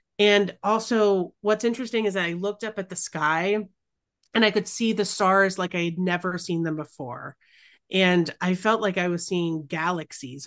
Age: 30-49